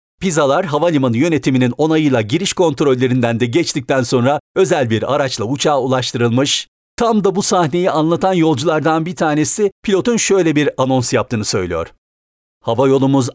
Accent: native